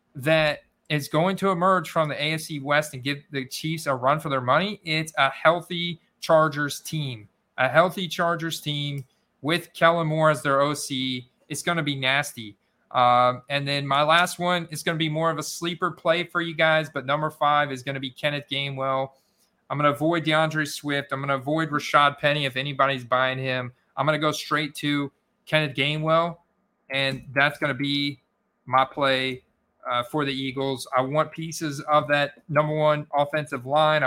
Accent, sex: American, male